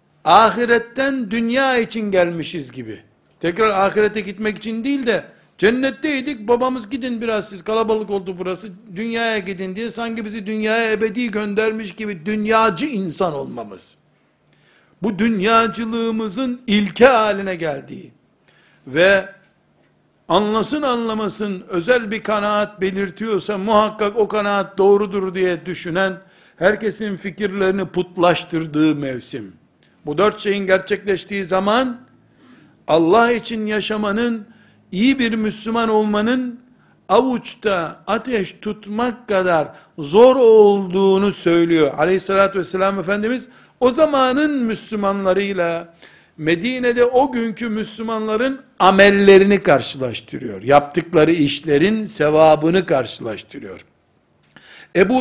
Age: 60-79